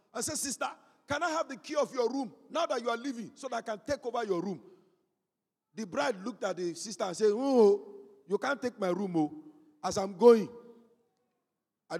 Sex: male